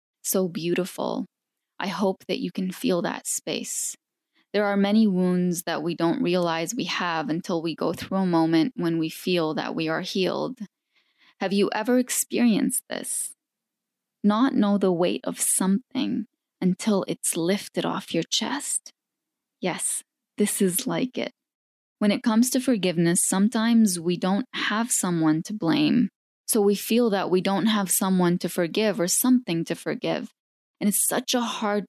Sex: female